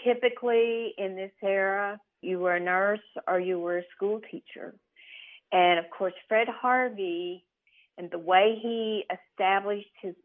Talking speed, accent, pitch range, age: 140 wpm, American, 175-220 Hz, 50-69